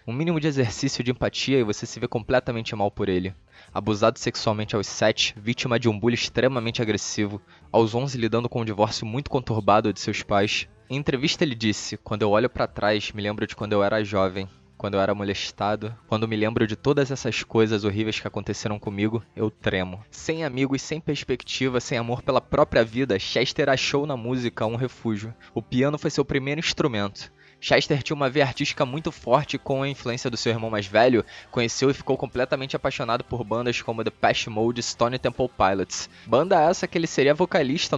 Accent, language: Brazilian, Portuguese